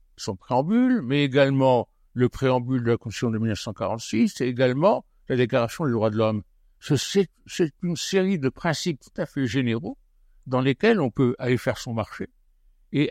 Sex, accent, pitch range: male, French, 105-135 Hz